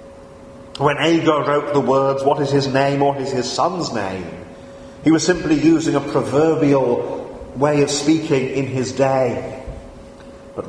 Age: 40-59